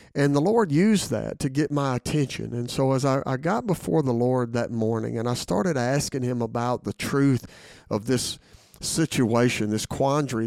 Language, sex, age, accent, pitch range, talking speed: English, male, 50-69, American, 115-145 Hz, 190 wpm